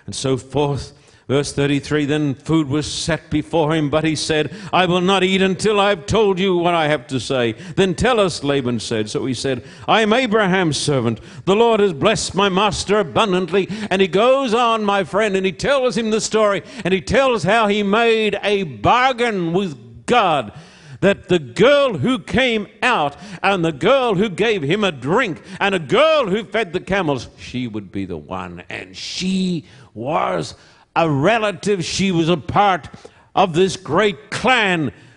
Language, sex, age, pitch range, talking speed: English, male, 60-79, 140-205 Hz, 185 wpm